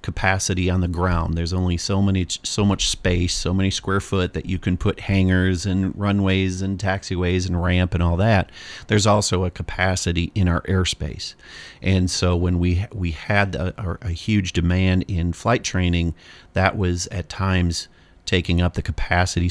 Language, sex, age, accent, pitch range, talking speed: English, male, 40-59, American, 90-100 Hz, 175 wpm